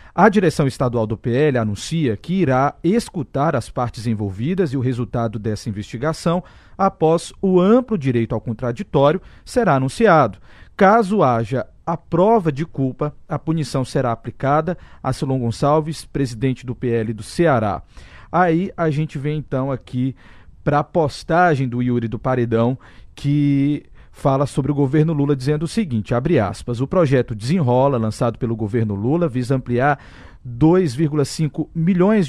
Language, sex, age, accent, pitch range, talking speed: Portuguese, male, 40-59, Brazilian, 125-170 Hz, 145 wpm